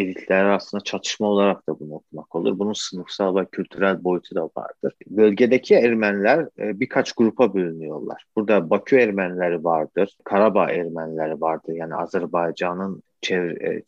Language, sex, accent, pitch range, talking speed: Turkish, male, native, 90-110 Hz, 130 wpm